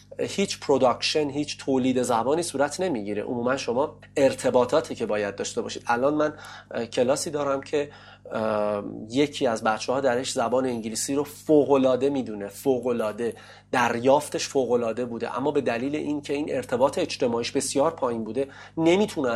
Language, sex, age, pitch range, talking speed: Persian, male, 30-49, 110-145 Hz, 135 wpm